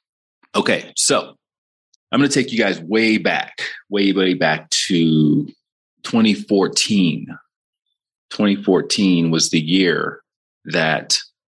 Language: English